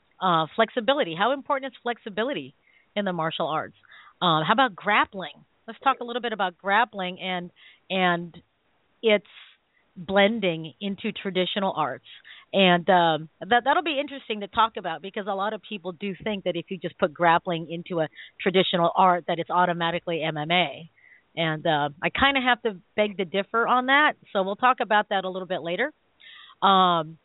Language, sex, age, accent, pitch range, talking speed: English, female, 40-59, American, 175-230 Hz, 180 wpm